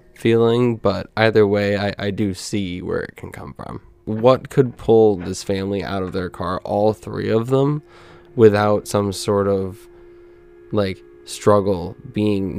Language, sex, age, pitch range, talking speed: English, male, 10-29, 100-115 Hz, 155 wpm